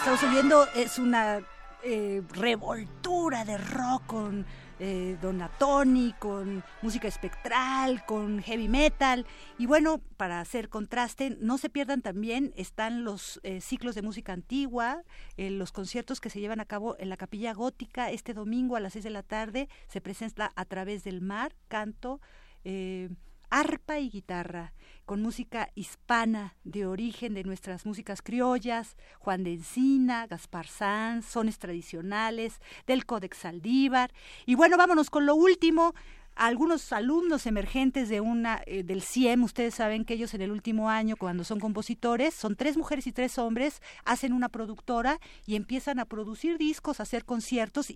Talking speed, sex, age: 160 wpm, female, 40-59